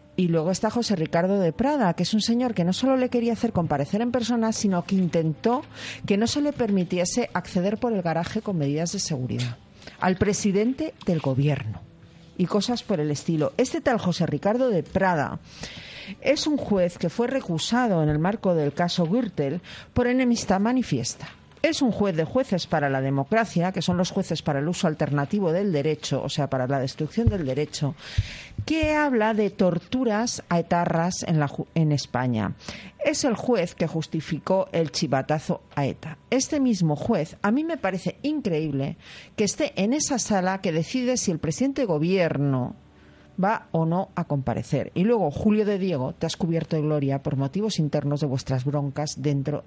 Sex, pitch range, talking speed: female, 150-225 Hz, 180 wpm